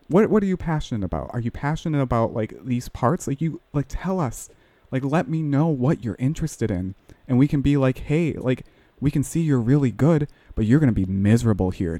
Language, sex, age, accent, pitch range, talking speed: English, male, 30-49, American, 105-135 Hz, 230 wpm